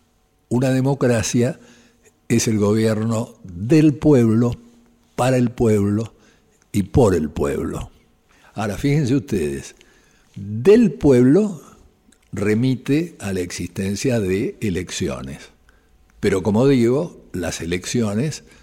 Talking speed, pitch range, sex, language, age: 95 wpm, 95-135 Hz, male, Spanish, 60-79